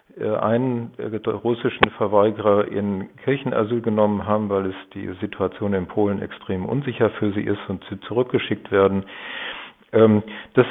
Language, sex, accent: German, male, German